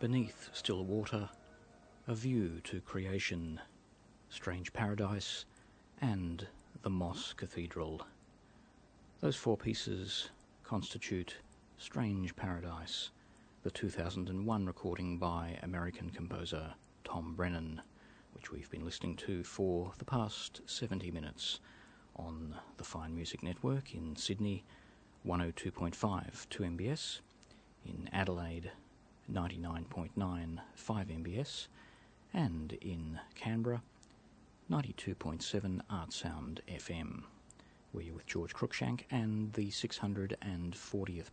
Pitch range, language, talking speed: 85-105 Hz, English, 95 wpm